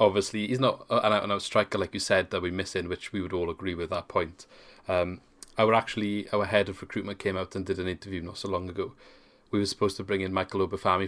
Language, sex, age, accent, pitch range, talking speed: English, male, 30-49, British, 90-105 Hz, 250 wpm